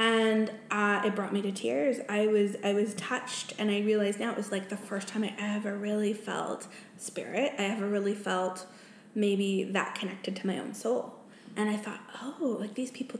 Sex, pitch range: female, 205-235 Hz